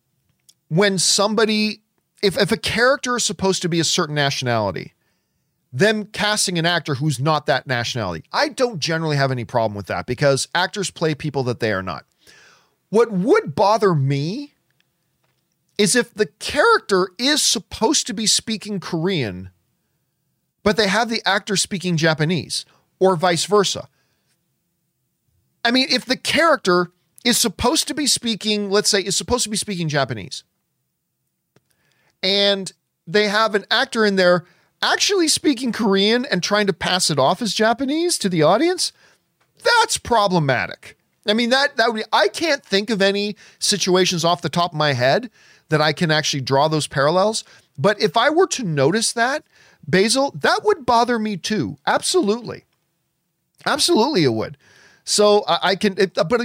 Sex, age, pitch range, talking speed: male, 40-59, 165-230 Hz, 160 wpm